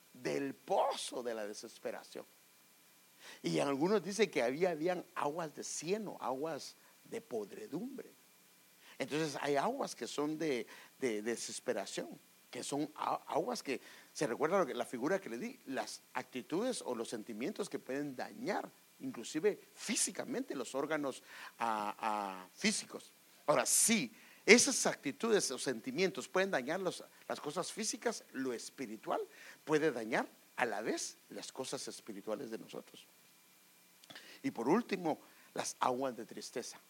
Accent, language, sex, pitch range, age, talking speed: Mexican, English, male, 135-215 Hz, 50-69, 140 wpm